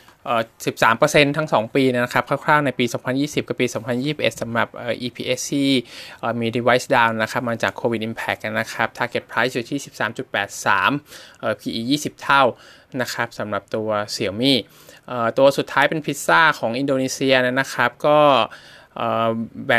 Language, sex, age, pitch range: Thai, male, 20-39, 115-135 Hz